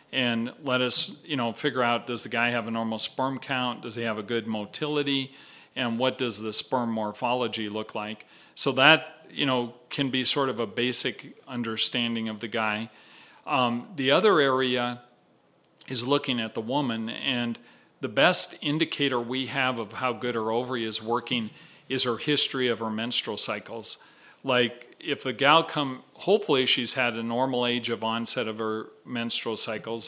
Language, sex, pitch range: English, male, 115-135 Hz